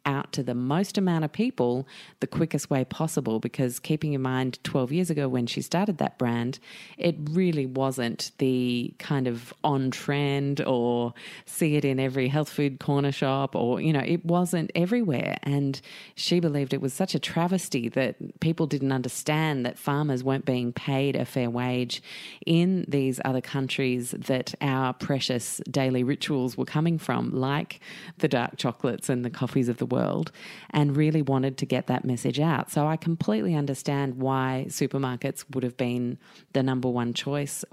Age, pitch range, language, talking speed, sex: 30-49, 130-155 Hz, English, 175 wpm, female